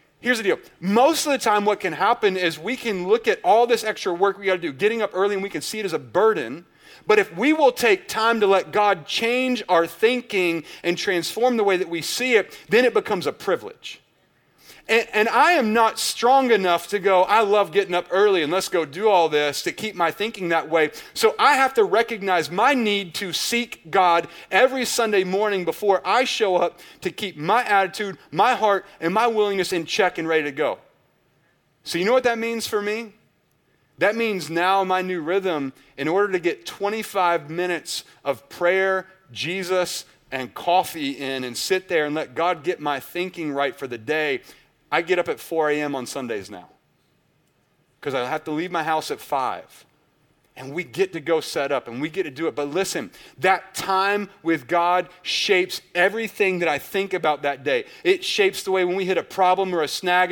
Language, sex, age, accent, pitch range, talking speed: English, male, 30-49, American, 170-225 Hz, 210 wpm